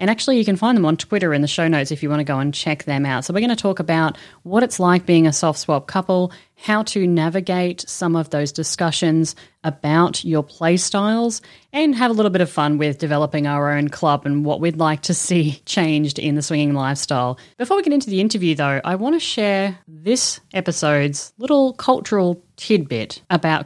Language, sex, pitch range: English, female, 150-200 Hz